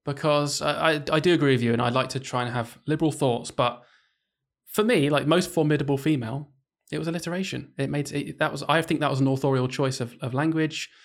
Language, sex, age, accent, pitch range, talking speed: English, male, 20-39, British, 125-150 Hz, 225 wpm